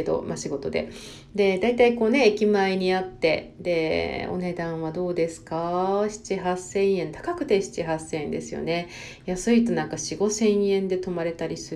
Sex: female